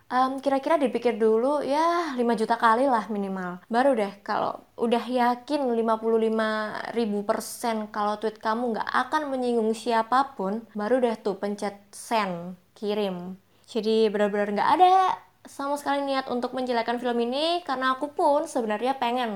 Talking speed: 145 wpm